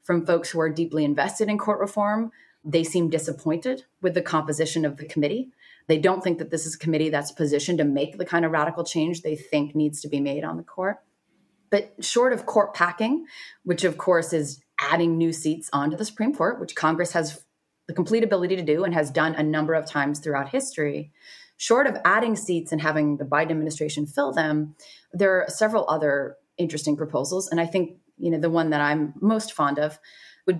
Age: 30-49